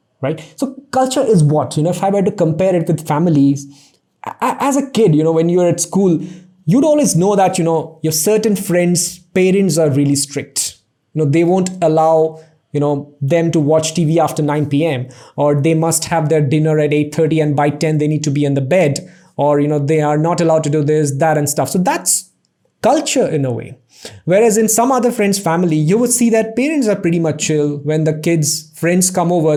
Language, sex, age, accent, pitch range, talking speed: English, male, 20-39, Indian, 150-190 Hz, 225 wpm